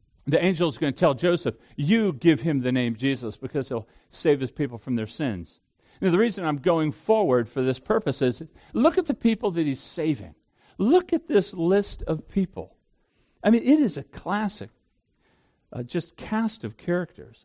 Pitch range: 130-205 Hz